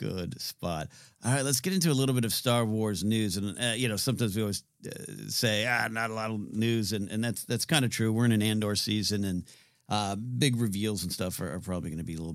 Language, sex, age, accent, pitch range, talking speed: English, male, 50-69, American, 100-140 Hz, 265 wpm